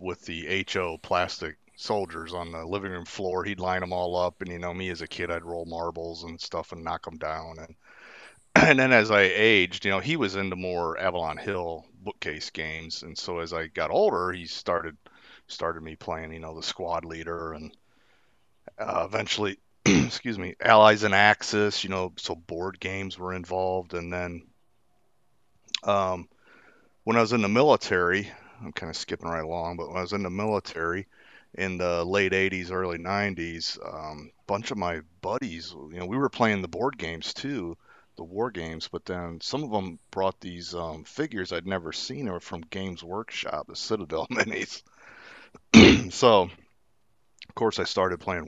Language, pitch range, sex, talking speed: English, 85-95 Hz, male, 185 wpm